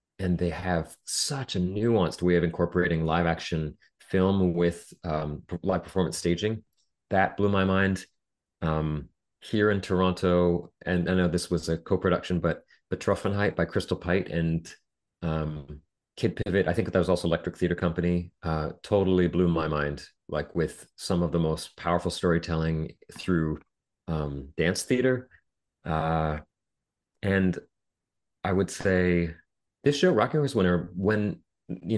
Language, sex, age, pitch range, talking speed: English, male, 30-49, 85-95 Hz, 150 wpm